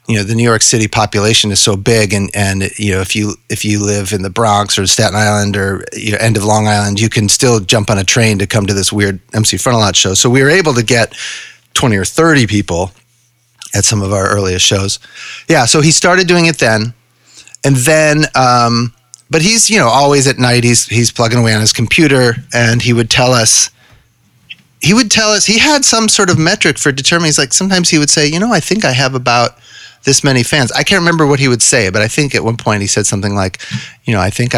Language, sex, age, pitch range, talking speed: English, male, 30-49, 110-155 Hz, 245 wpm